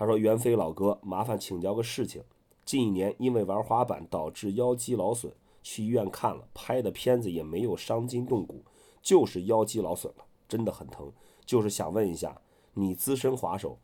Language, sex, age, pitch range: Chinese, male, 30-49, 95-120 Hz